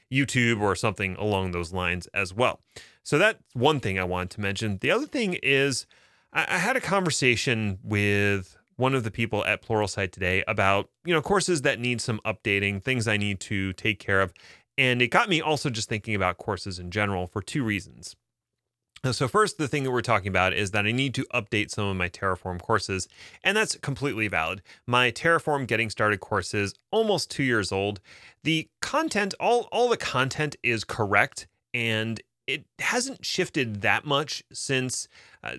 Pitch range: 100-145 Hz